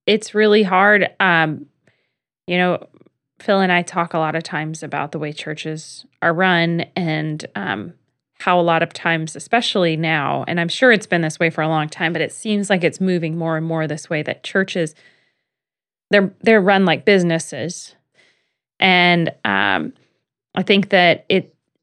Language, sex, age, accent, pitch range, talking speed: English, female, 20-39, American, 160-185 Hz, 175 wpm